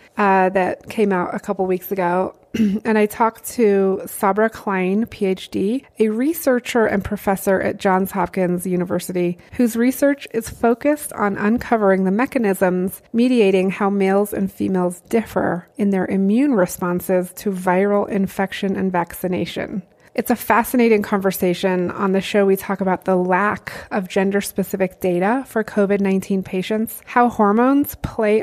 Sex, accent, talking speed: female, American, 140 wpm